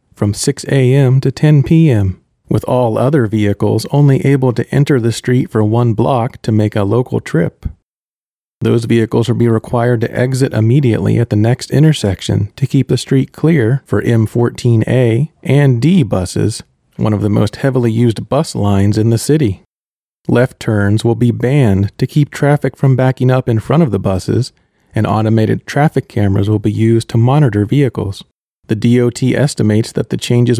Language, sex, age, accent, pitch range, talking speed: English, male, 30-49, American, 110-135 Hz, 175 wpm